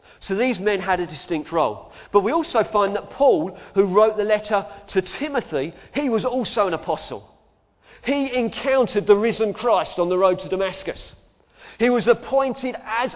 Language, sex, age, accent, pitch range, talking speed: English, male, 40-59, British, 185-225 Hz, 175 wpm